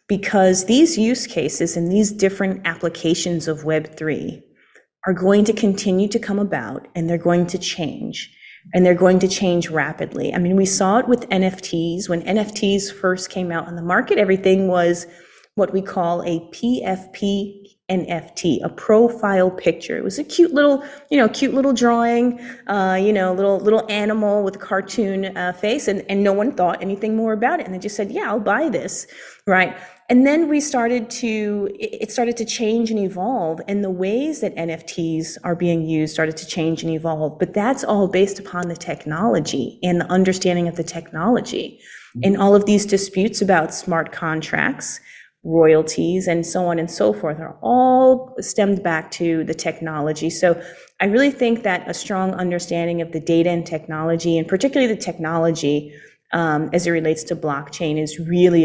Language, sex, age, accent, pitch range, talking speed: English, female, 30-49, American, 170-210 Hz, 180 wpm